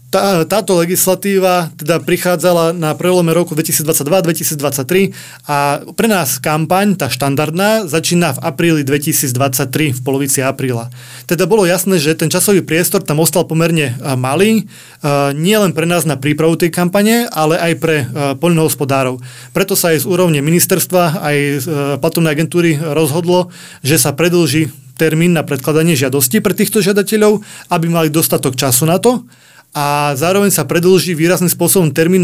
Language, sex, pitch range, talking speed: Slovak, male, 145-175 Hz, 145 wpm